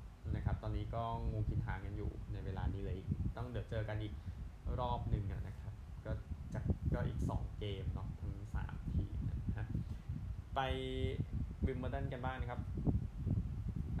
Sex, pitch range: male, 90-110 Hz